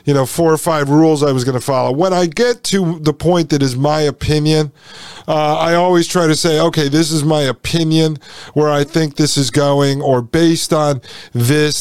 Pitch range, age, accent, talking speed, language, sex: 145-180 Hz, 40-59, American, 215 wpm, English, male